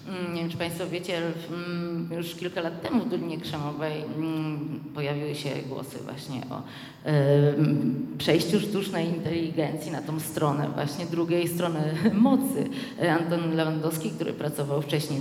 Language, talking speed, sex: Polish, 125 wpm, female